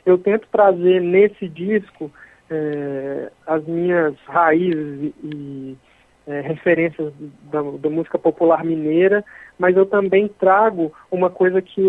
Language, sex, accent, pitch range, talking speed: Portuguese, male, Brazilian, 160-195 Hz, 120 wpm